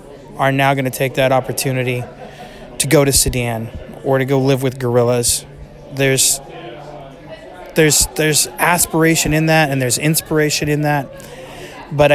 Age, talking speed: 20-39, 145 wpm